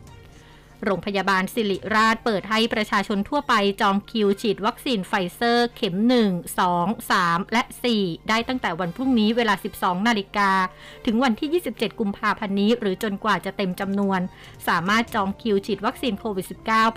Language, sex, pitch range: Thai, female, 195-235 Hz